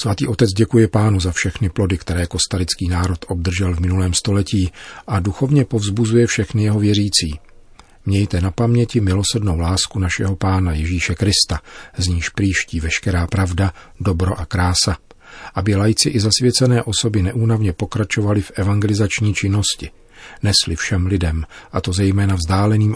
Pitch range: 90-105 Hz